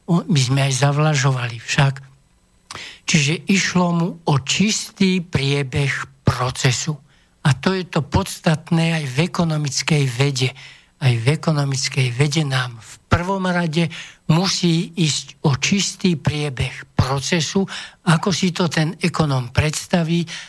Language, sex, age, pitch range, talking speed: Slovak, male, 60-79, 140-170 Hz, 120 wpm